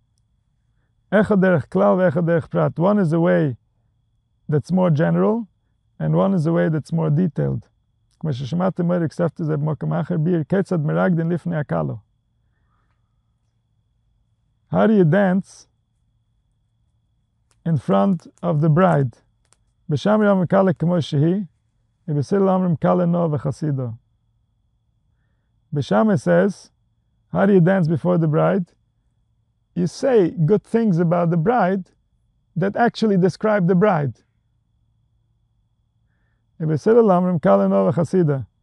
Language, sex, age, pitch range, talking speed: English, male, 40-59, 115-180 Hz, 70 wpm